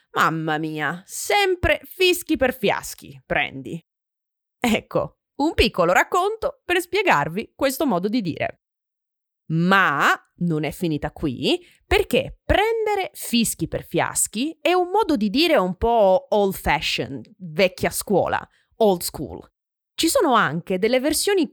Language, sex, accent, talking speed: Italian, female, native, 125 wpm